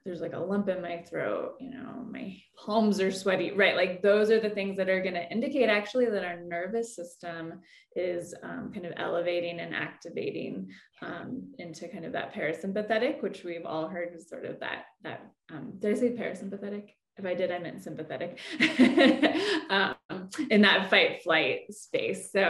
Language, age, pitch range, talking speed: English, 20-39, 175-225 Hz, 185 wpm